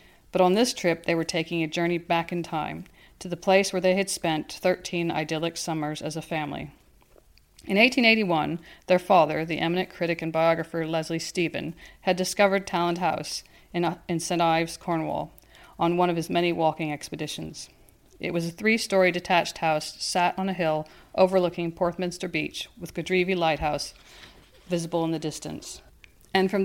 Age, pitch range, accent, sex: 40-59, 160-185 Hz, American, female